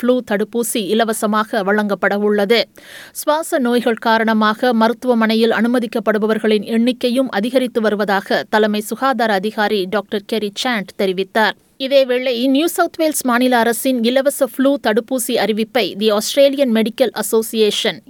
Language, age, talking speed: Tamil, 20-39, 105 wpm